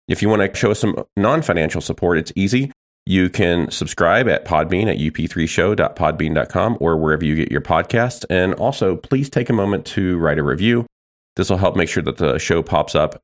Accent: American